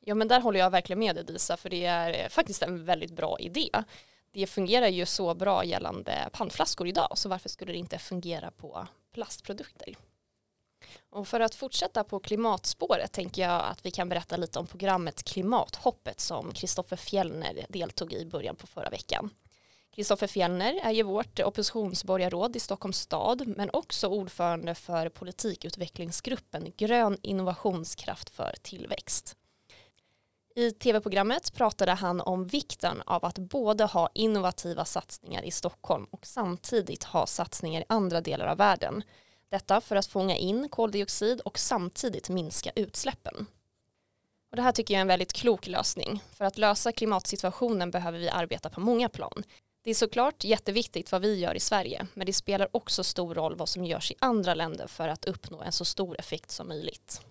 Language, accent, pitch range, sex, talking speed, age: Swedish, native, 175-220 Hz, female, 165 wpm, 20-39